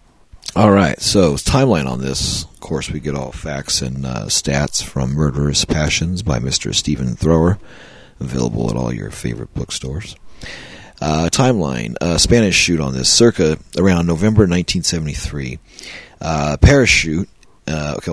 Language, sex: English, male